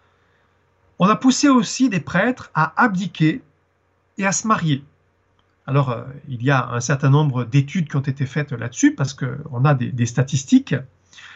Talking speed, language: 170 wpm, French